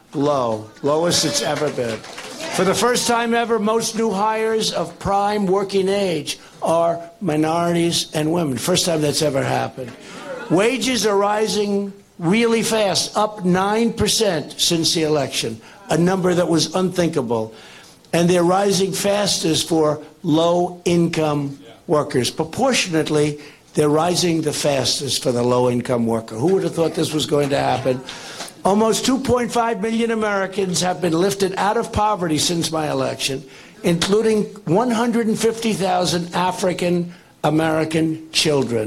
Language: English